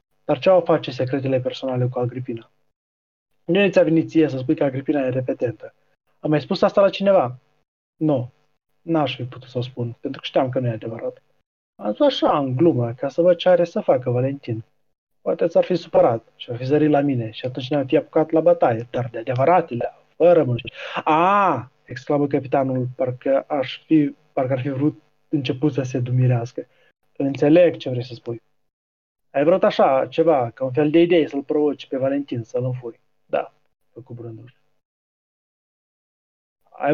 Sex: male